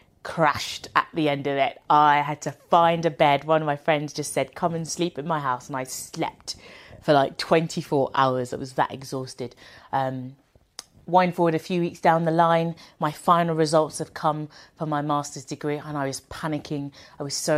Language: English